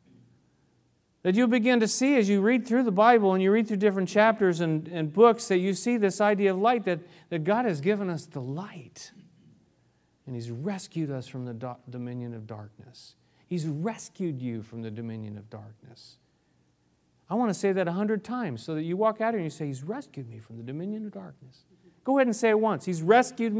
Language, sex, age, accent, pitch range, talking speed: English, male, 40-59, American, 135-200 Hz, 215 wpm